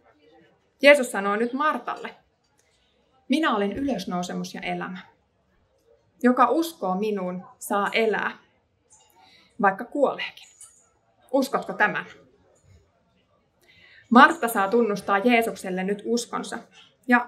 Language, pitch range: Finnish, 195-250 Hz